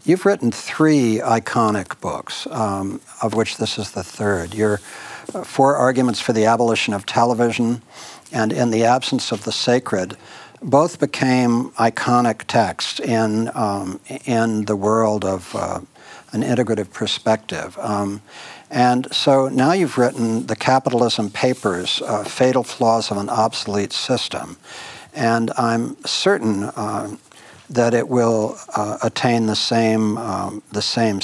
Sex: male